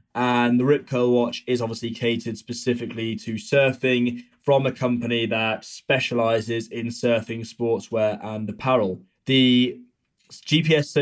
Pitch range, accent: 115-135 Hz, British